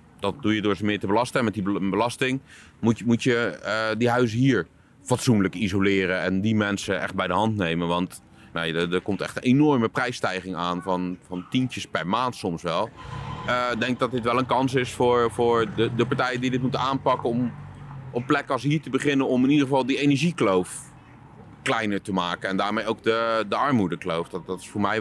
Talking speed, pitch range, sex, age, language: 220 wpm, 95-125 Hz, male, 30-49, Dutch